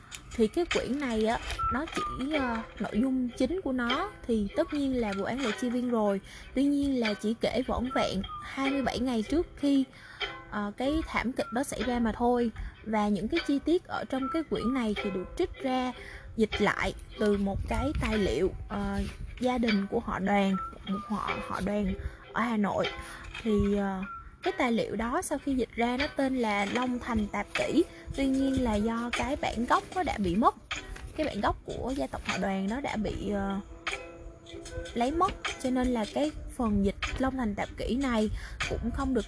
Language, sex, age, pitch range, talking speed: Vietnamese, female, 10-29, 210-270 Hz, 205 wpm